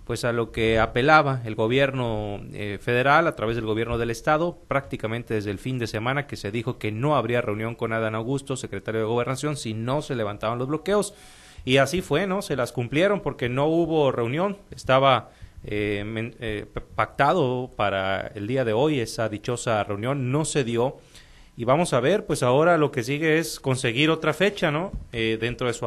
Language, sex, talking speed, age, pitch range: Spanish, male, 195 wpm, 30-49, 110-140 Hz